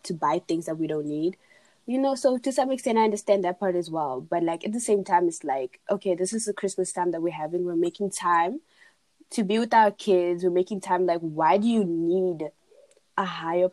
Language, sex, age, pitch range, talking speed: English, female, 20-39, 175-205 Hz, 235 wpm